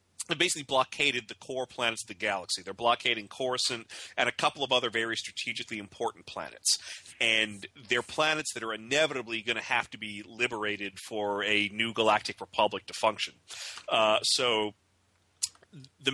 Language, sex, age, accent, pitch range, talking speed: English, male, 40-59, American, 105-130 Hz, 155 wpm